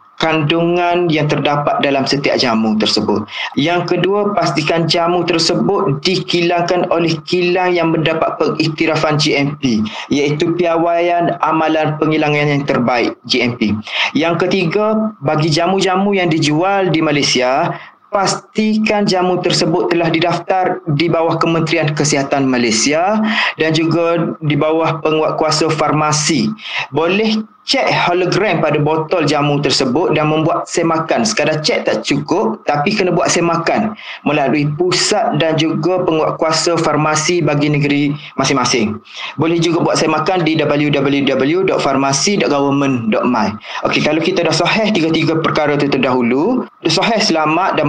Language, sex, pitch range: Malay, male, 150-175 Hz